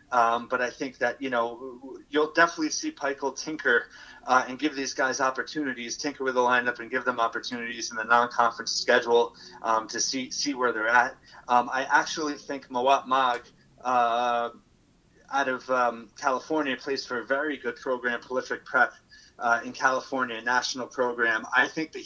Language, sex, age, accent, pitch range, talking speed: English, male, 30-49, American, 120-140 Hz, 175 wpm